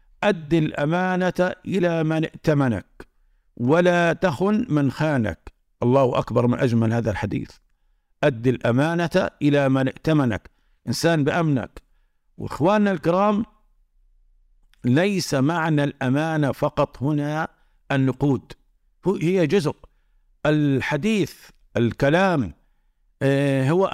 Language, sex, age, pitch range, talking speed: Arabic, male, 50-69, 135-180 Hz, 90 wpm